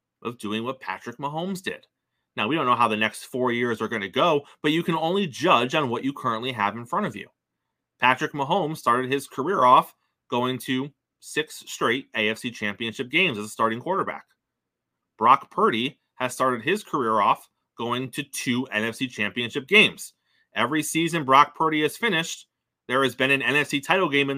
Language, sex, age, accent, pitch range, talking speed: English, male, 30-49, American, 115-155 Hz, 190 wpm